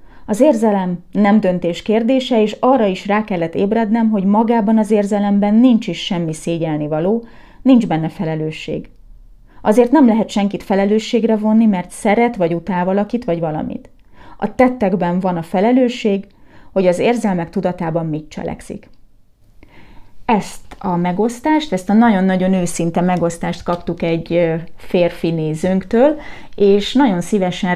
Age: 30-49